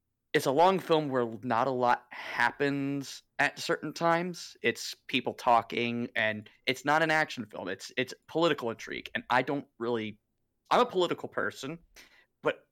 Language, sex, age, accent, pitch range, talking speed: English, male, 20-39, American, 120-145 Hz, 160 wpm